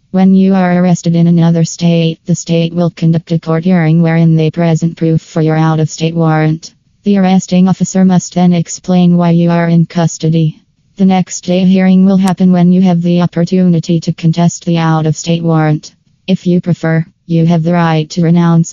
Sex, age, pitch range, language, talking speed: female, 20-39, 165-180 Hz, English, 190 wpm